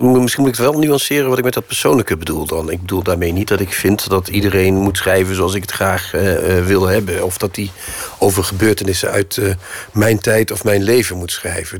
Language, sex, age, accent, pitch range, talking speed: Dutch, male, 40-59, Dutch, 90-100 Hz, 230 wpm